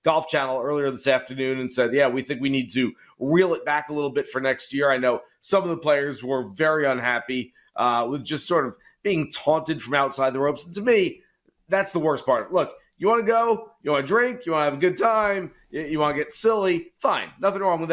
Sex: male